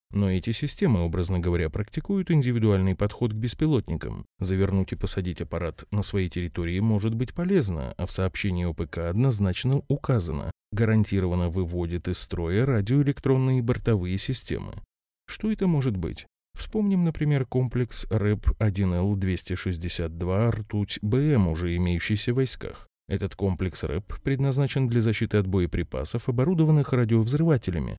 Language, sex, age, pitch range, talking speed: Russian, male, 30-49, 95-130 Hz, 120 wpm